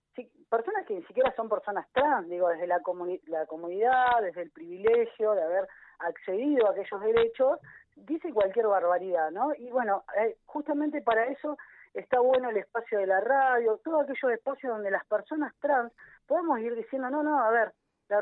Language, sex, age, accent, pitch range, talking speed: Spanish, female, 20-39, Argentinian, 200-275 Hz, 180 wpm